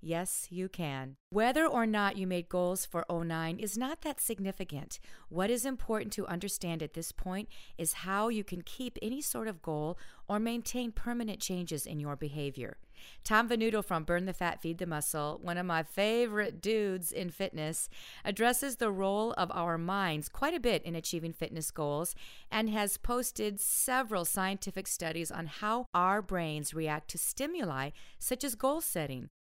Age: 50-69